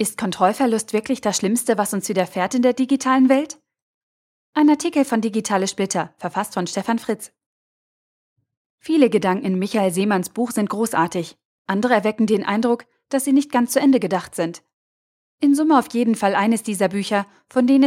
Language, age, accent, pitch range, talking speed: German, 30-49, German, 195-250 Hz, 170 wpm